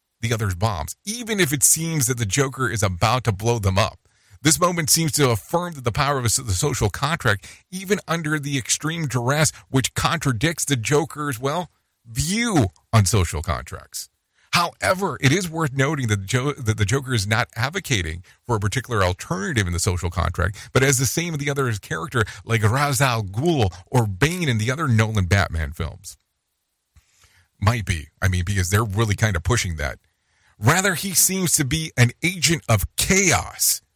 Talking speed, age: 180 wpm, 40-59